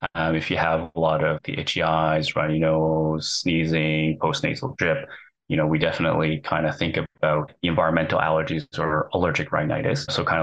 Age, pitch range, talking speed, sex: 20-39, 80-85 Hz, 180 wpm, male